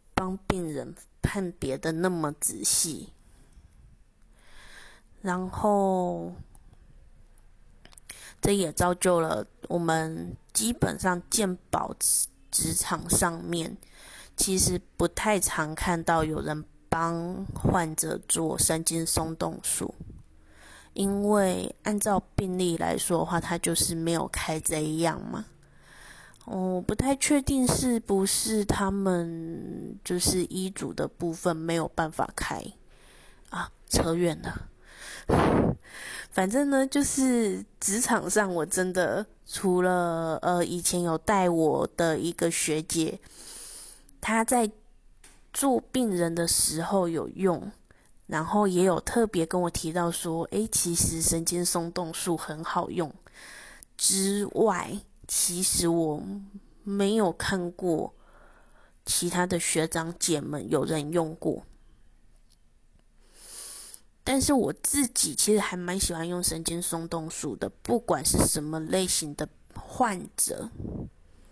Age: 20-39